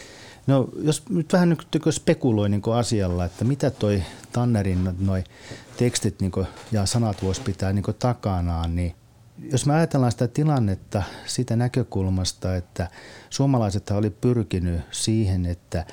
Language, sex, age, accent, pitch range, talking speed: Finnish, male, 40-59, native, 95-125 Hz, 125 wpm